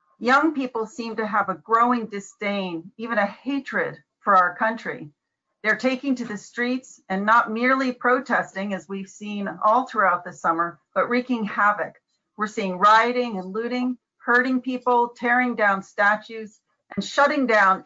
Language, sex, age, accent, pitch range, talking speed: English, female, 40-59, American, 195-245 Hz, 155 wpm